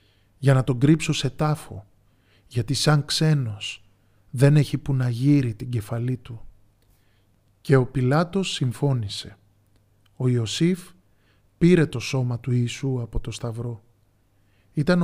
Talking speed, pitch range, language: 130 wpm, 105-140 Hz, Greek